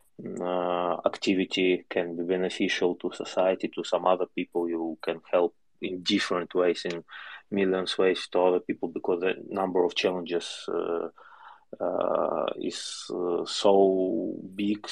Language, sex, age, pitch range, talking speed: English, male, 20-39, 90-100 Hz, 135 wpm